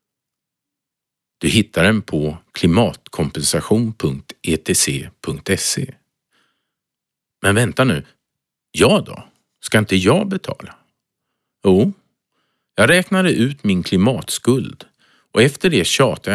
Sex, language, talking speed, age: male, Swedish, 90 wpm, 50-69